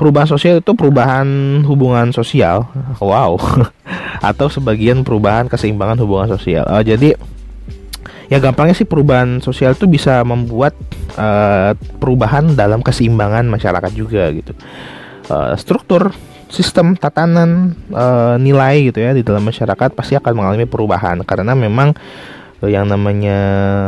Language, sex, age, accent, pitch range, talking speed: Indonesian, male, 20-39, native, 105-145 Hz, 125 wpm